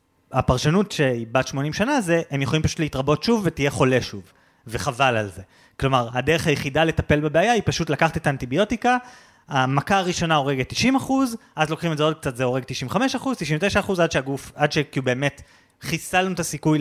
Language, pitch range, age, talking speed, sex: Hebrew, 130-180 Hz, 30-49, 180 wpm, male